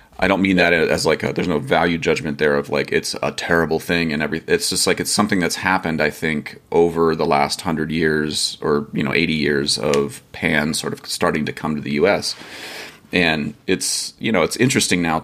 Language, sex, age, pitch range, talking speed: English, male, 30-49, 80-100 Hz, 215 wpm